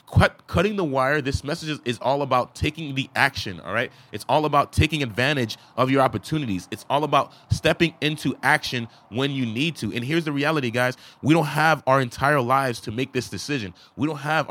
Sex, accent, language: male, American, English